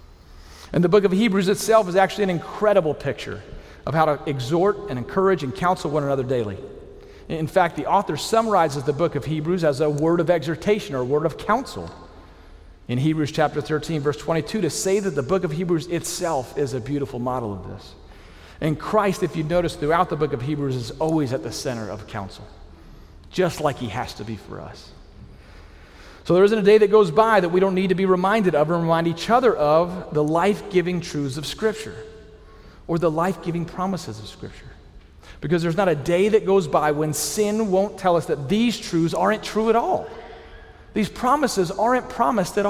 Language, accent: English, American